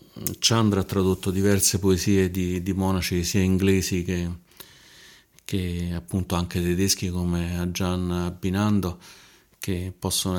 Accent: native